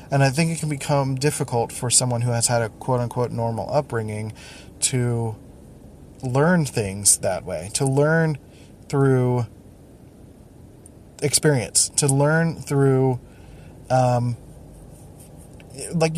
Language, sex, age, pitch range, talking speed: English, male, 20-39, 115-140 Hz, 115 wpm